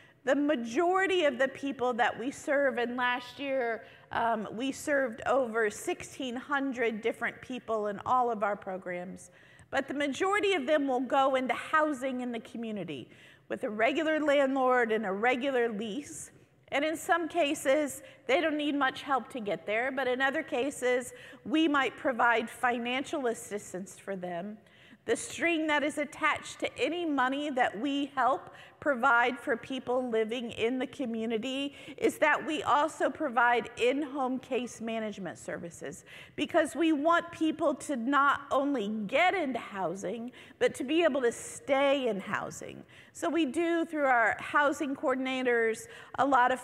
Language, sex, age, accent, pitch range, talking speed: English, female, 50-69, American, 235-295 Hz, 155 wpm